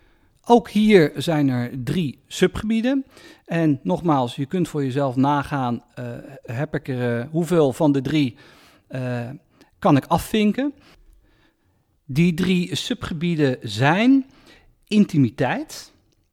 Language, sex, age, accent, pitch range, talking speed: Dutch, male, 50-69, Dutch, 130-185 Hz, 105 wpm